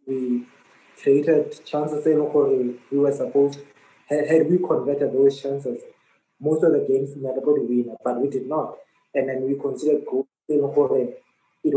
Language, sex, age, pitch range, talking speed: English, male, 20-39, 125-165 Hz, 165 wpm